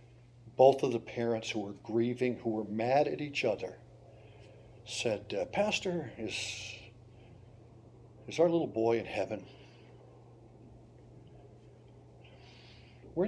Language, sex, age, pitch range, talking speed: English, male, 60-79, 115-125 Hz, 110 wpm